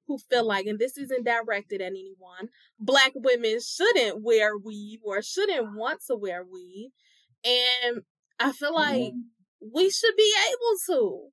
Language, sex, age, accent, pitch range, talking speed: English, female, 20-39, American, 220-315 Hz, 155 wpm